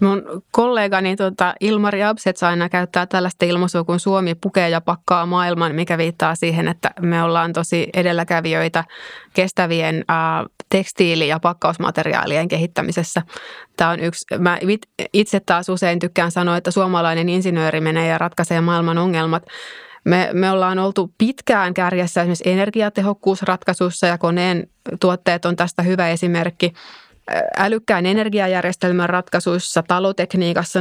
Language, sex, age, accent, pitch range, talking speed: Finnish, female, 20-39, native, 170-185 Hz, 125 wpm